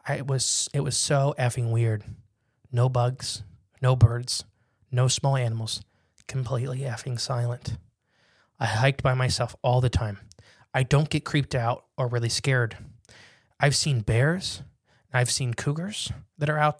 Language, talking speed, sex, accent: English, 150 wpm, male, American